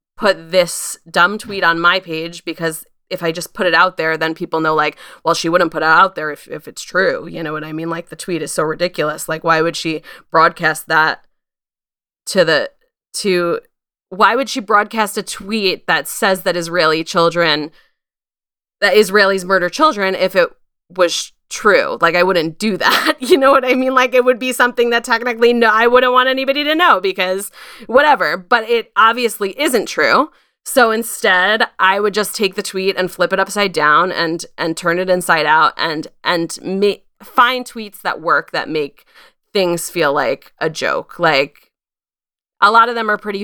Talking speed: 195 wpm